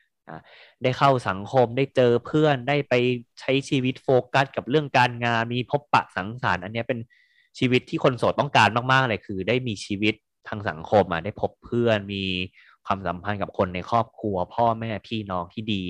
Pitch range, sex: 95-120 Hz, male